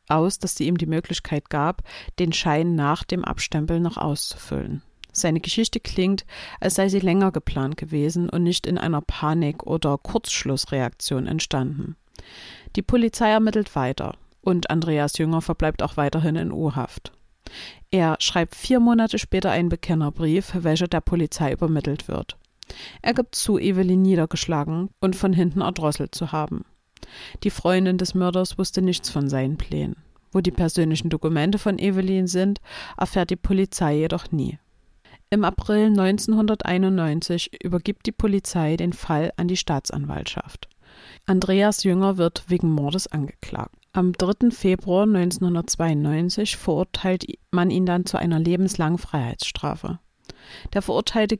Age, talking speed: 50-69, 140 wpm